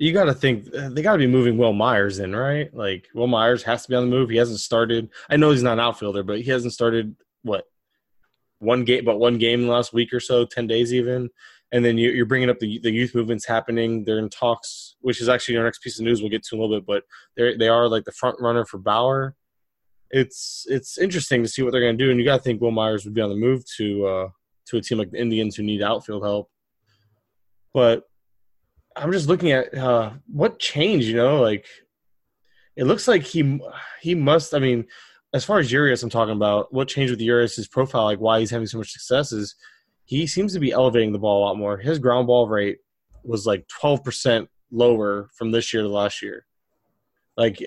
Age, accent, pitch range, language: 20-39, American, 110-125 Hz, English